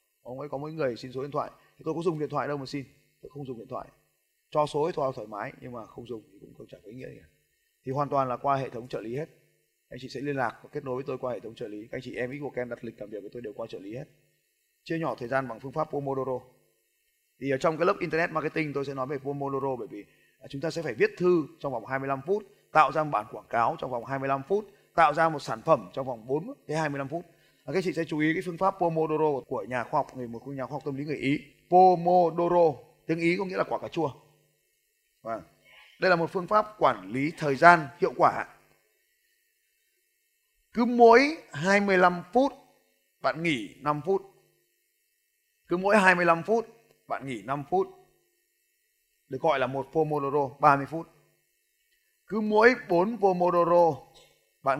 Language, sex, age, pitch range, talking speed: Vietnamese, male, 20-39, 135-180 Hz, 225 wpm